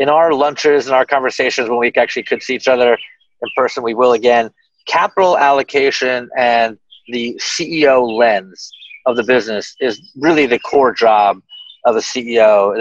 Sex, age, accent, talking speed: male, 40-59, American, 170 wpm